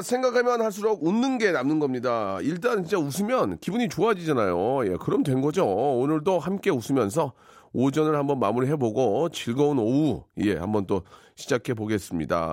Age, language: 40-59, Korean